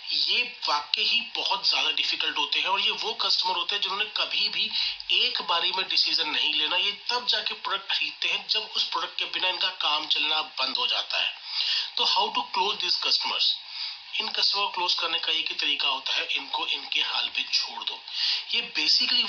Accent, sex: native, male